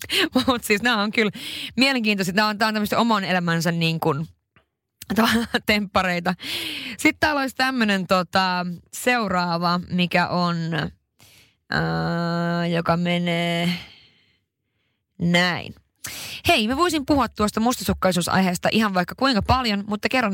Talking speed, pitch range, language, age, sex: 115 wpm, 175-225 Hz, Finnish, 20-39, female